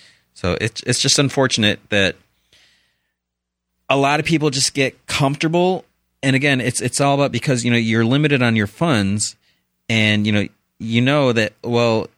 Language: English